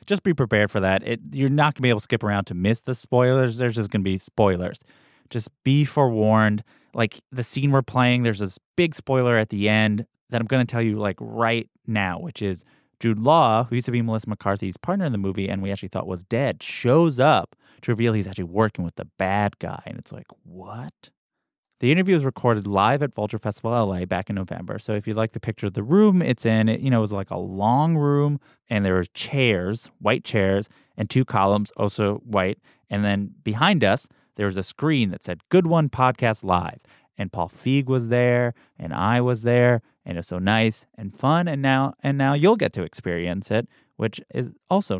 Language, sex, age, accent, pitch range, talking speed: English, male, 30-49, American, 100-135 Hz, 225 wpm